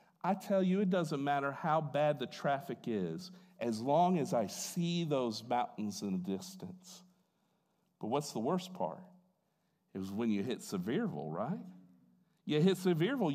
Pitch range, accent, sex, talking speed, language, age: 140-200 Hz, American, male, 160 wpm, English, 50-69